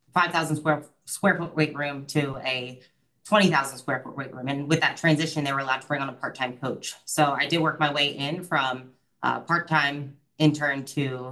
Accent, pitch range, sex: American, 130-155 Hz, female